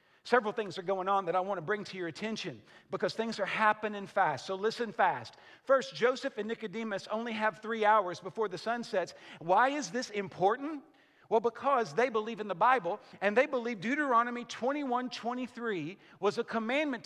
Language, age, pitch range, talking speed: English, 50-69, 200-245 Hz, 185 wpm